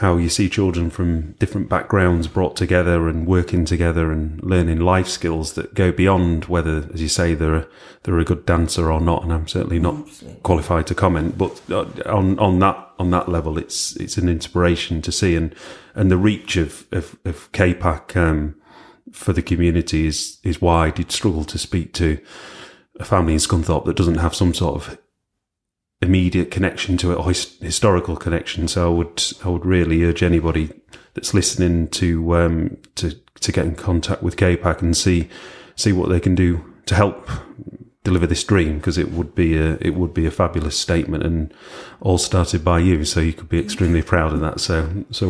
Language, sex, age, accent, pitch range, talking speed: English, male, 30-49, British, 85-95 Hz, 190 wpm